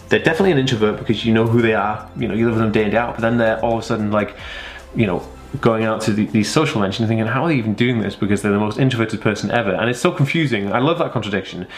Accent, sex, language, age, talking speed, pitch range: British, male, English, 20-39, 305 wpm, 110-145 Hz